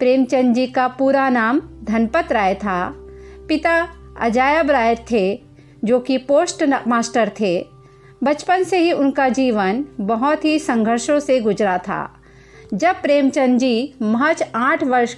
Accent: native